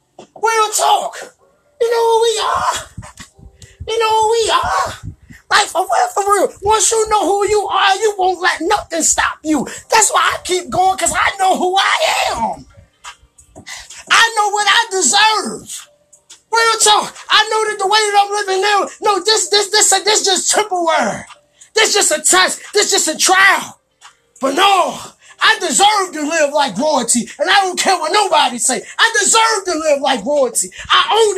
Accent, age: American, 20-39